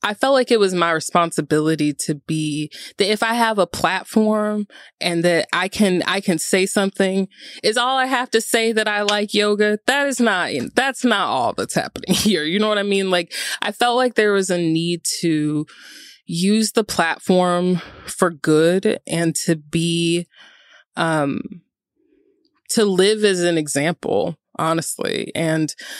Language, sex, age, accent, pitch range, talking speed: English, female, 20-39, American, 170-220 Hz, 165 wpm